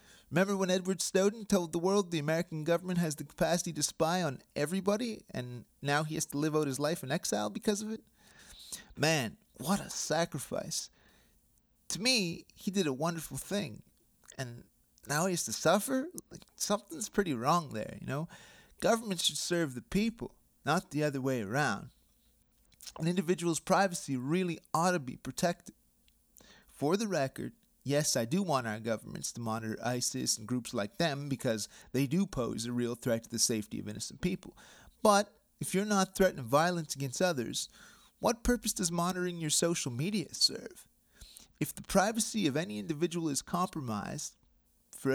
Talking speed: 165 wpm